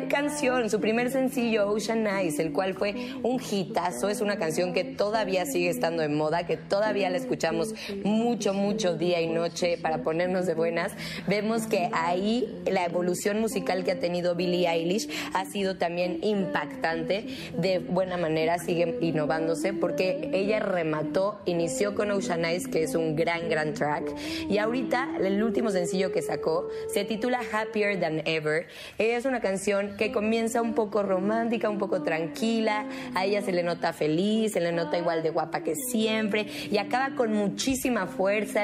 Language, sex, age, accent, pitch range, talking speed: Spanish, female, 20-39, Mexican, 165-215 Hz, 170 wpm